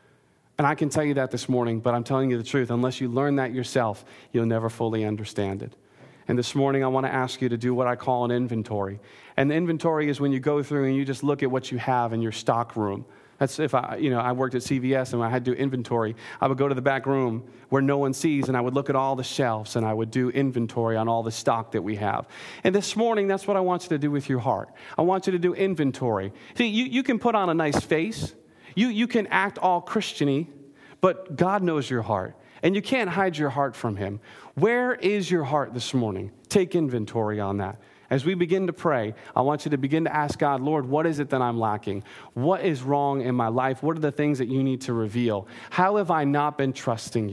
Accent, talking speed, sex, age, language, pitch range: American, 255 wpm, male, 40-59, English, 120-155 Hz